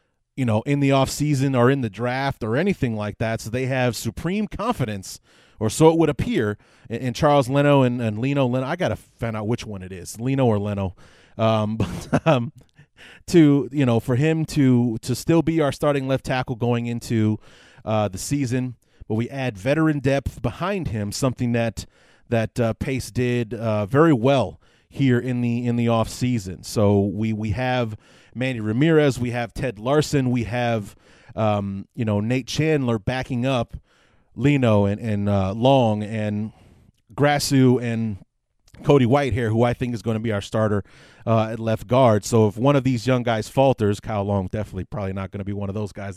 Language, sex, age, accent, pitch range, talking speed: English, male, 30-49, American, 105-135 Hz, 190 wpm